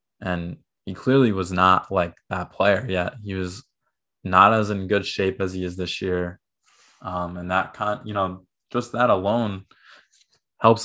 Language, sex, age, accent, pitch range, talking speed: English, male, 20-39, American, 90-105 Hz, 170 wpm